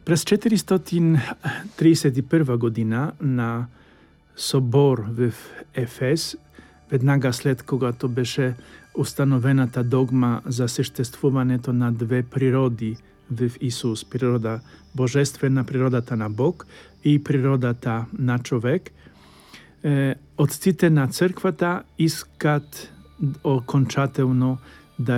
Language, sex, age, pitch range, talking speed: Polish, male, 50-69, 120-145 Hz, 85 wpm